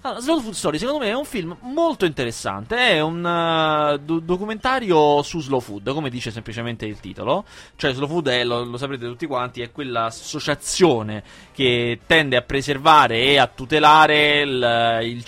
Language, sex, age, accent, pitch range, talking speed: Italian, male, 20-39, native, 120-155 Hz, 155 wpm